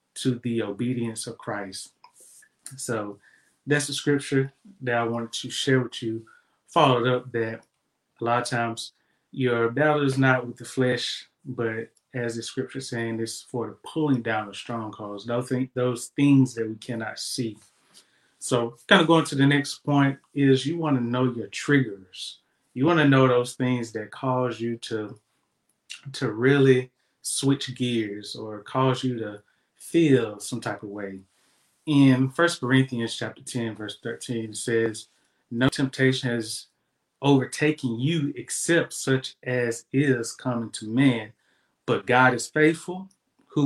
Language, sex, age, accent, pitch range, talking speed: English, male, 20-39, American, 115-135 Hz, 155 wpm